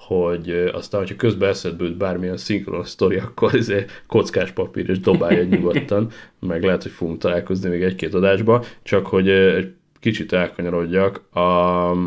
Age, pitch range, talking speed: 30-49, 90-110 Hz, 145 wpm